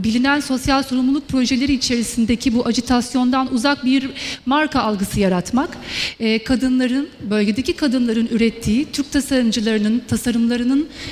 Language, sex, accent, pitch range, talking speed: Turkish, female, native, 230-270 Hz, 105 wpm